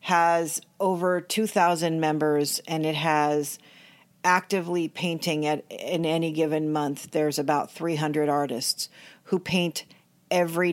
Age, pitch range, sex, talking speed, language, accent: 40-59, 155-180 Hz, female, 115 wpm, English, American